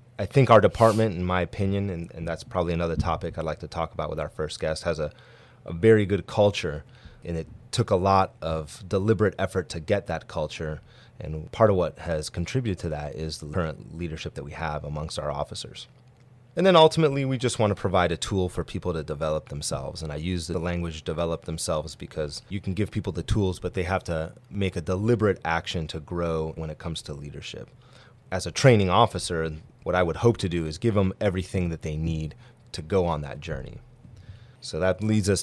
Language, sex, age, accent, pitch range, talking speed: English, male, 30-49, American, 80-105 Hz, 215 wpm